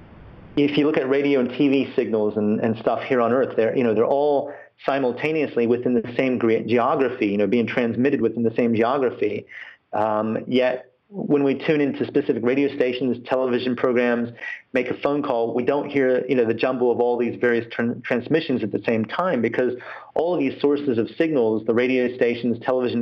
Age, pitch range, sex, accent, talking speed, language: 40-59, 115-135 Hz, male, American, 195 wpm, English